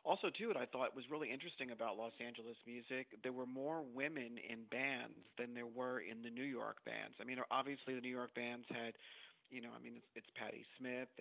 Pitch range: 120-135 Hz